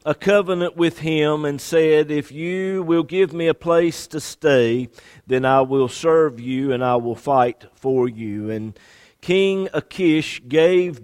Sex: male